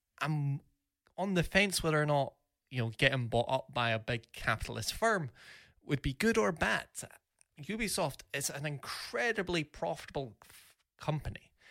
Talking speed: 145 wpm